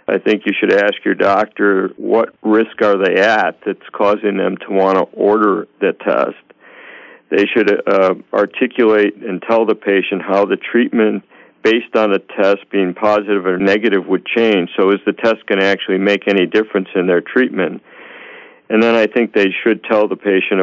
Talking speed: 185 wpm